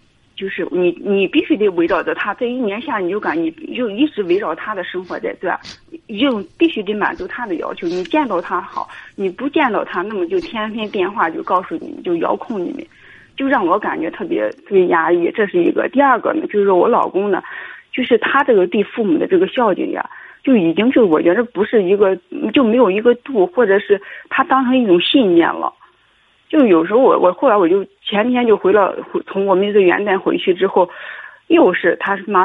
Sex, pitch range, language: female, 200-325 Hz, Chinese